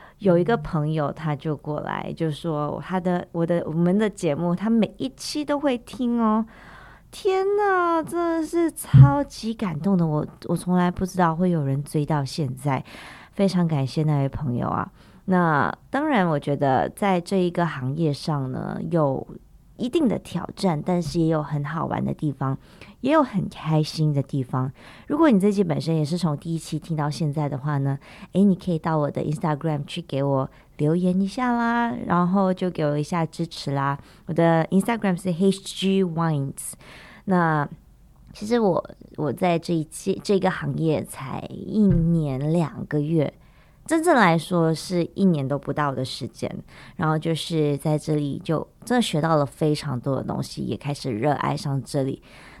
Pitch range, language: 150-190 Hz, English